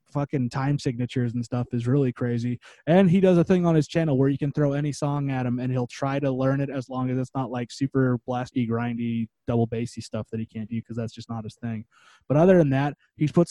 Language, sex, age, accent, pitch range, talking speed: English, male, 20-39, American, 125-155 Hz, 260 wpm